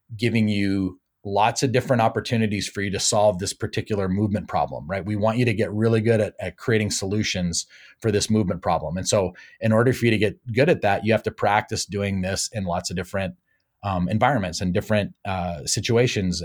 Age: 30-49